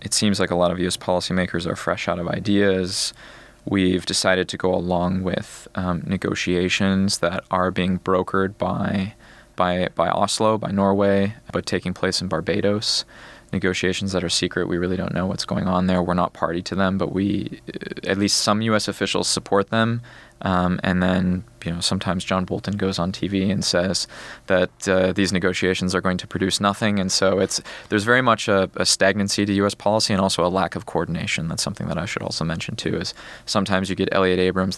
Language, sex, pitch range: English, male, 90-100 Hz